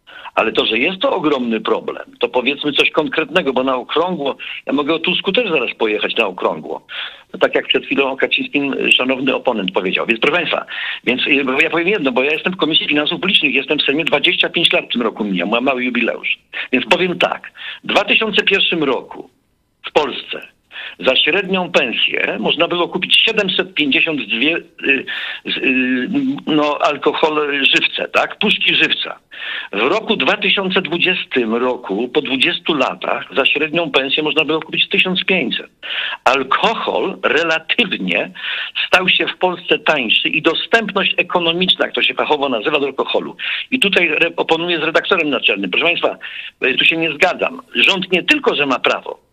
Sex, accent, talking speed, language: male, native, 155 wpm, Polish